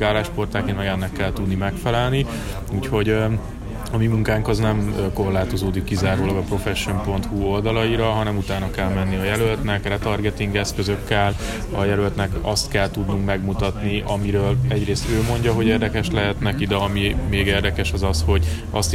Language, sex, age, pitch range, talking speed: Hungarian, male, 20-39, 95-110 Hz, 150 wpm